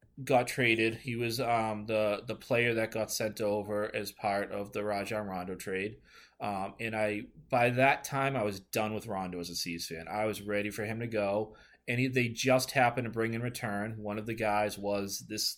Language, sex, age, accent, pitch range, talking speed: English, male, 20-39, American, 100-120 Hz, 215 wpm